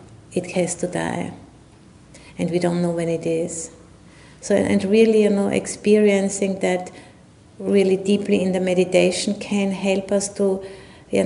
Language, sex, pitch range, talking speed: English, female, 165-190 Hz, 150 wpm